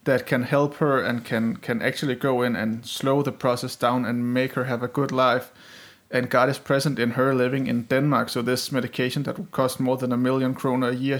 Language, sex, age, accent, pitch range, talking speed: Danish, male, 30-49, native, 120-135 Hz, 235 wpm